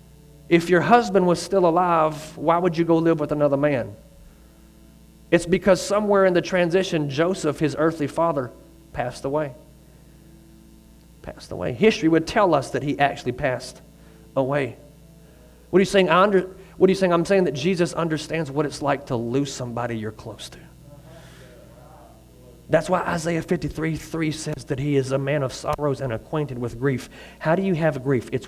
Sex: male